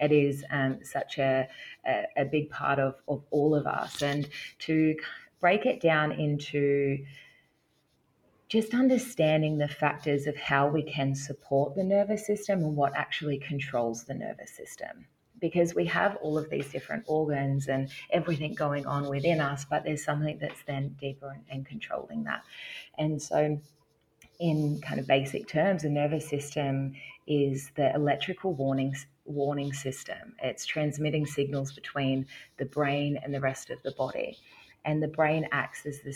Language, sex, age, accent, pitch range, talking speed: English, female, 30-49, Australian, 135-150 Hz, 160 wpm